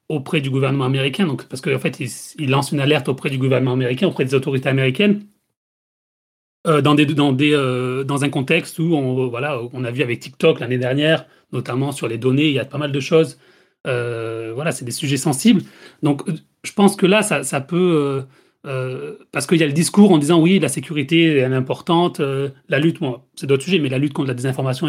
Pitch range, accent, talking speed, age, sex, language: 135-170 Hz, French, 230 wpm, 30-49, male, French